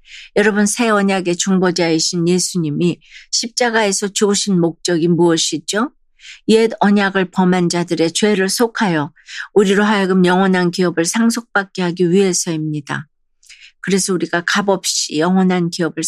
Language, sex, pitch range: Korean, female, 170-205 Hz